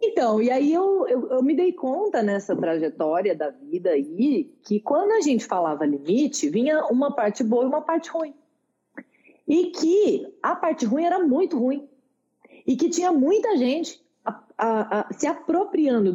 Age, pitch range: 40-59, 195-320 Hz